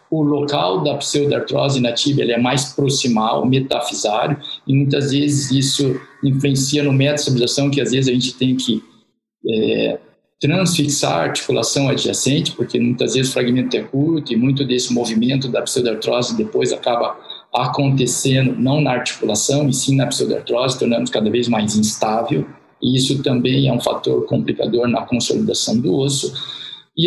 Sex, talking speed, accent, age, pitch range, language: male, 155 wpm, Brazilian, 50-69, 125-145 Hz, Portuguese